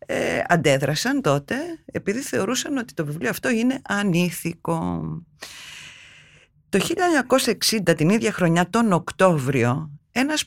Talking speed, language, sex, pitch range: 110 wpm, Greek, female, 150-225 Hz